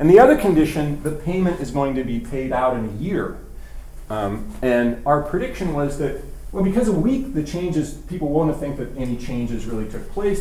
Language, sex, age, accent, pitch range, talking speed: English, male, 40-59, American, 115-155 Hz, 210 wpm